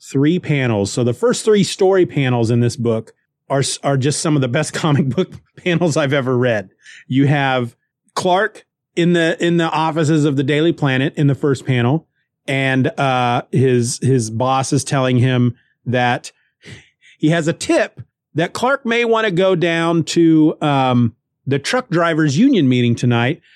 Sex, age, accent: male, 30-49, American